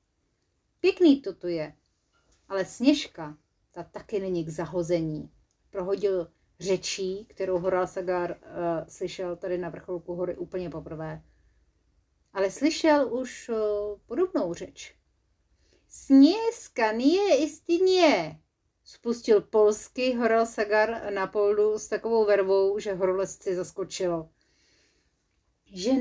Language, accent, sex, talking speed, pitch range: Czech, native, female, 105 wpm, 180-265 Hz